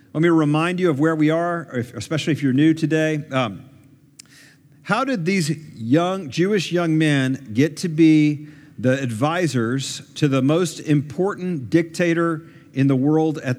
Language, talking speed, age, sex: English, 155 wpm, 50-69, male